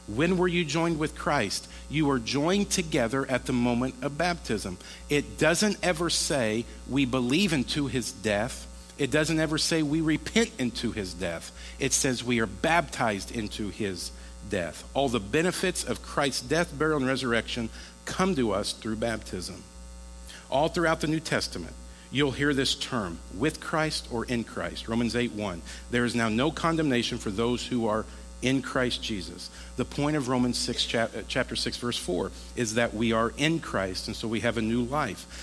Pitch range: 100-140 Hz